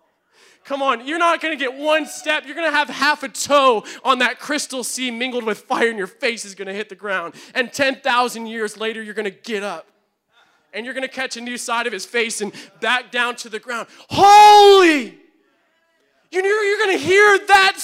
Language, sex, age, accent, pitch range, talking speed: English, male, 20-39, American, 175-245 Hz, 215 wpm